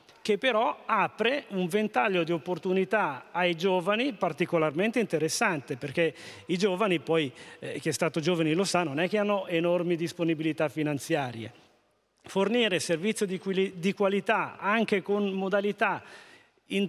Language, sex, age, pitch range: Italian, male, 40-59, 165-210 Hz